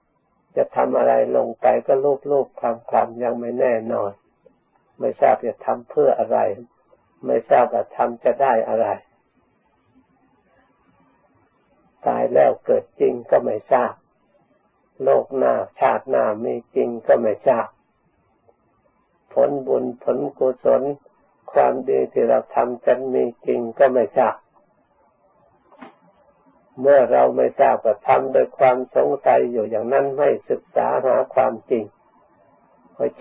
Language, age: Thai, 60-79